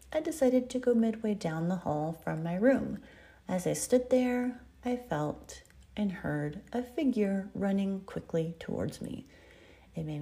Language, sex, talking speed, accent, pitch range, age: English, female, 160 wpm, American, 170-235 Hz, 40-59